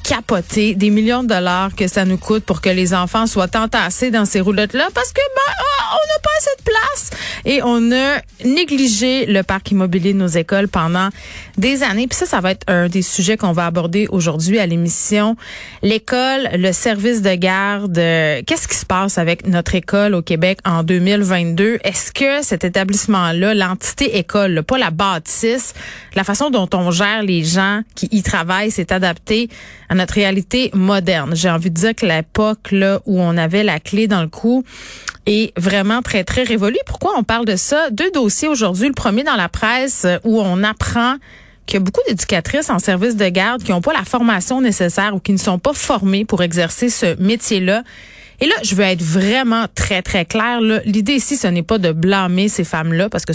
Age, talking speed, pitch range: 30-49, 195 wpm, 185-225 Hz